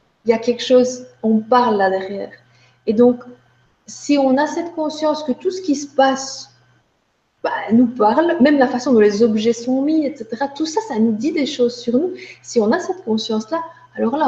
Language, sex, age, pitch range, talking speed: French, female, 30-49, 225-275 Hz, 205 wpm